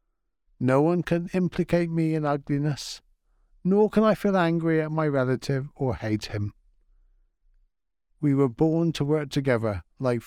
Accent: British